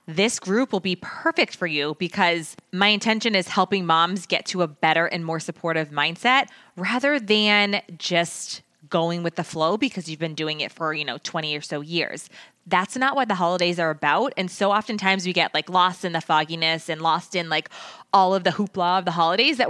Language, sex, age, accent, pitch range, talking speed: English, female, 20-39, American, 170-215 Hz, 210 wpm